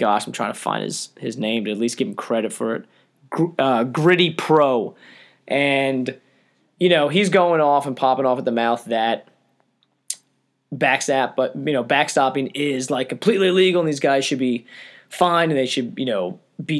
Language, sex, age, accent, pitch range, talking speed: English, male, 20-39, American, 130-175 Hz, 190 wpm